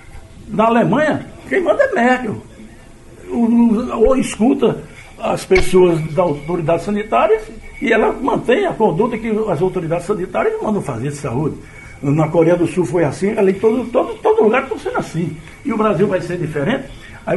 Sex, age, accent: male, 60-79, Brazilian